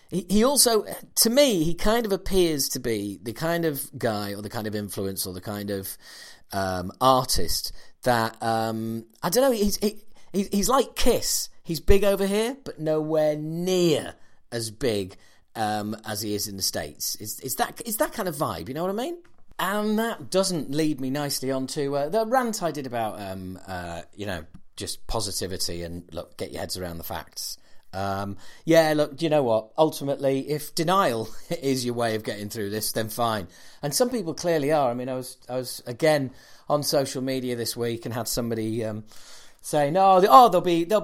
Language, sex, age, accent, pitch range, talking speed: English, male, 40-59, British, 110-185 Hz, 200 wpm